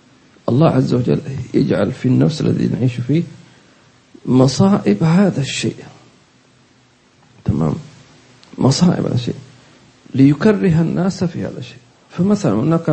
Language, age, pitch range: English, 50-69, 125-185 Hz